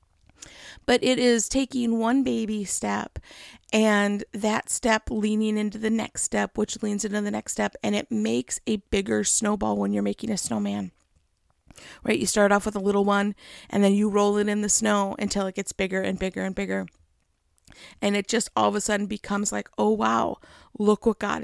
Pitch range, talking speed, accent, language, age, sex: 190-220 Hz, 195 wpm, American, English, 50-69, female